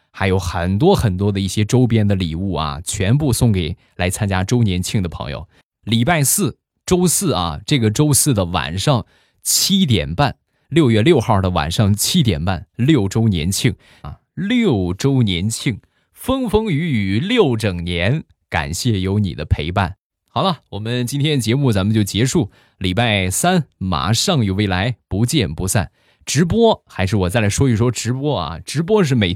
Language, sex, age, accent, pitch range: Chinese, male, 20-39, native, 90-125 Hz